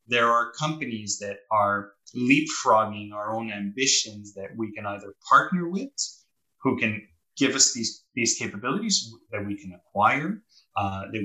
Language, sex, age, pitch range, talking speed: English, male, 20-39, 100-135 Hz, 150 wpm